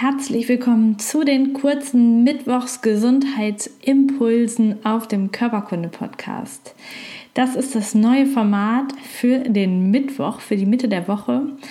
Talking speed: 115 wpm